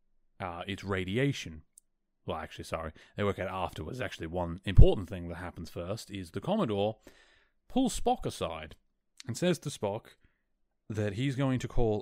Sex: male